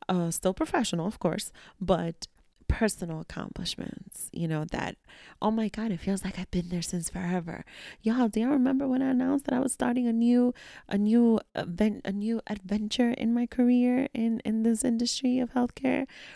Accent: American